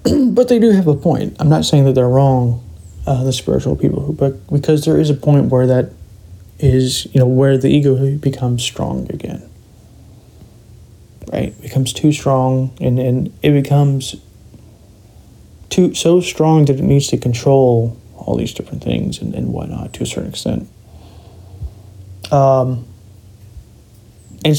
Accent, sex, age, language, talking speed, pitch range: American, male, 30-49, English, 155 wpm, 100-145 Hz